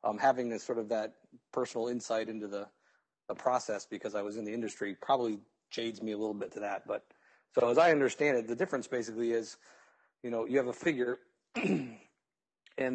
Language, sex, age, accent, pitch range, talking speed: English, male, 40-59, American, 105-120 Hz, 200 wpm